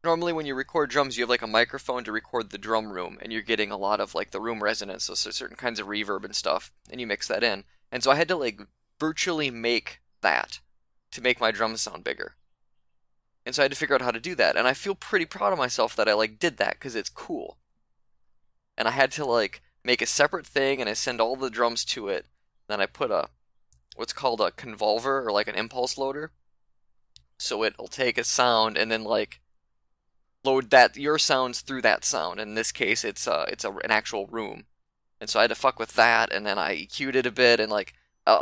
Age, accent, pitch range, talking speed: 20-39, American, 110-140 Hz, 235 wpm